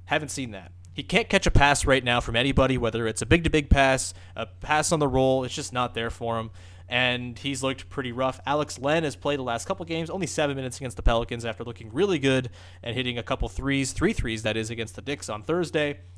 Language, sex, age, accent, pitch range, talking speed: English, male, 20-39, American, 115-150 Hz, 250 wpm